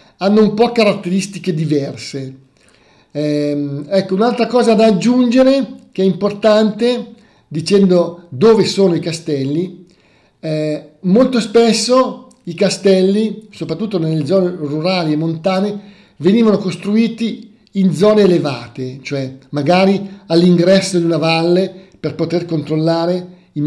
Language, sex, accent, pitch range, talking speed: Italian, male, native, 150-190 Hz, 115 wpm